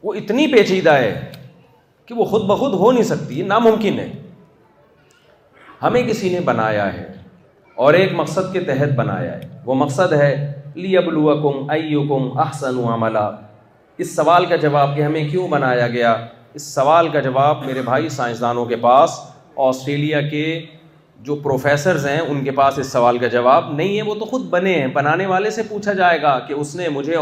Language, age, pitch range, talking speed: Urdu, 40-59, 145-190 Hz, 175 wpm